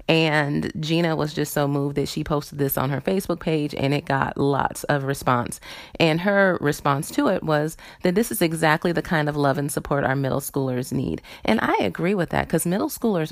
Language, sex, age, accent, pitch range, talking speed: English, female, 30-49, American, 135-170 Hz, 215 wpm